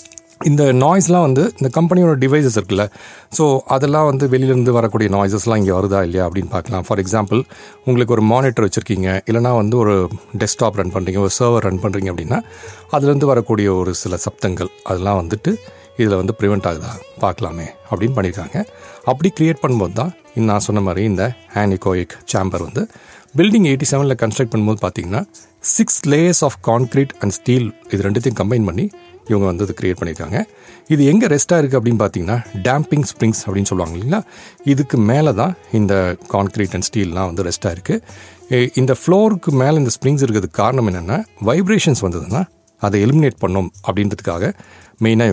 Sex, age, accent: male, 40-59, native